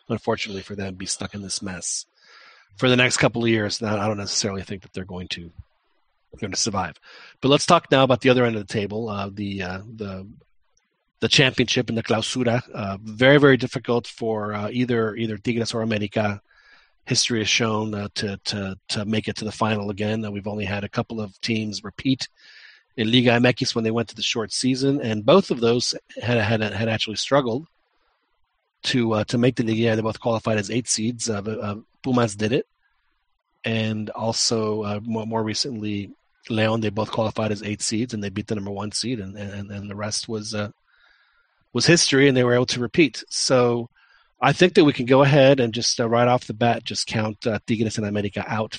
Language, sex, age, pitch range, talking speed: English, male, 40-59, 105-120 Hz, 210 wpm